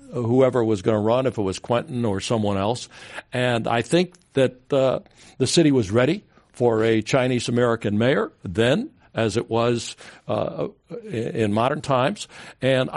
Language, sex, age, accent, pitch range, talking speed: English, male, 60-79, American, 115-145 Hz, 155 wpm